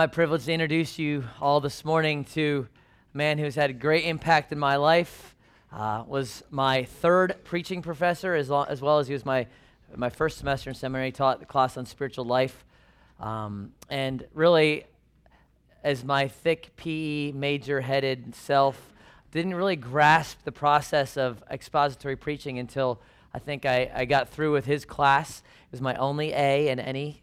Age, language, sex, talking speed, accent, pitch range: 30-49, English, male, 170 wpm, American, 125-155 Hz